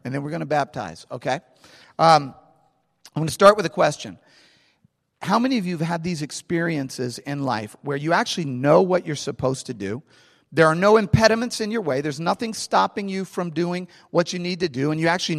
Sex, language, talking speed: male, English, 215 wpm